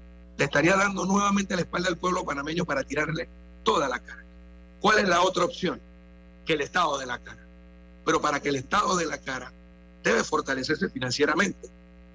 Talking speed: 175 wpm